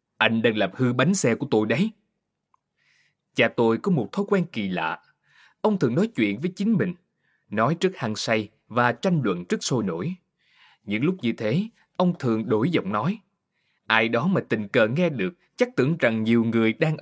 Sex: male